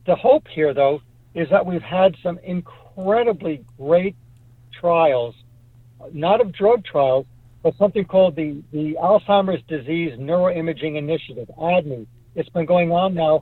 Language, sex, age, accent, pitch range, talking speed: English, male, 60-79, American, 135-180 Hz, 140 wpm